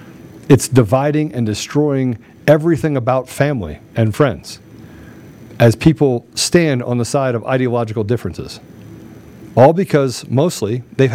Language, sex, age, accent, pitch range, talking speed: English, male, 40-59, American, 110-140 Hz, 120 wpm